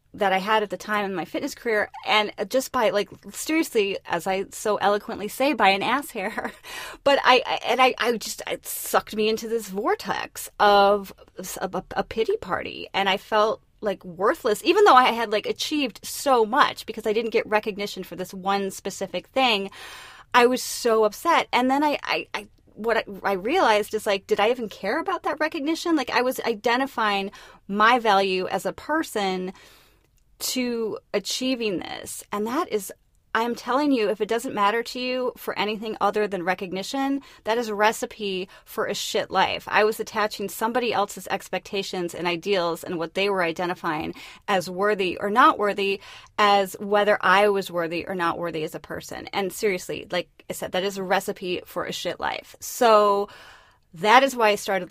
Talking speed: 185 wpm